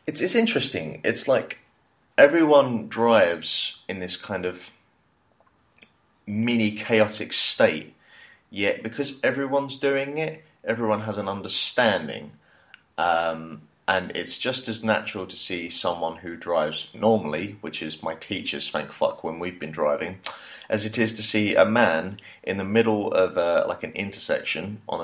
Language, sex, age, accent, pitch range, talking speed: English, male, 30-49, British, 80-110 Hz, 145 wpm